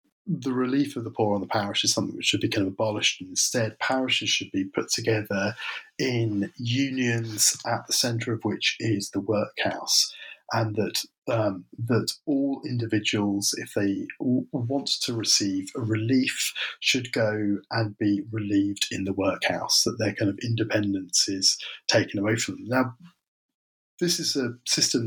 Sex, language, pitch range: male, English, 105-130 Hz